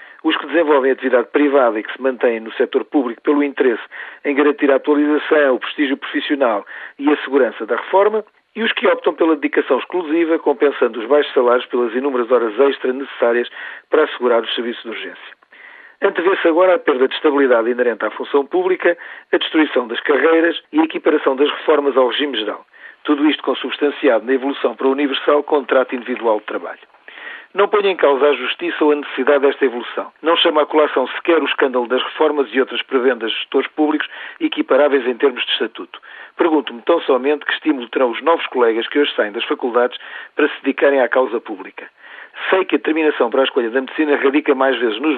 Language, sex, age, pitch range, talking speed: Portuguese, male, 40-59, 130-155 Hz, 195 wpm